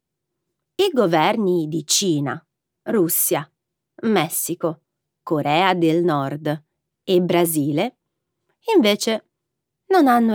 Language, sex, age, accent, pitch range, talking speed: Italian, female, 30-49, native, 155-205 Hz, 80 wpm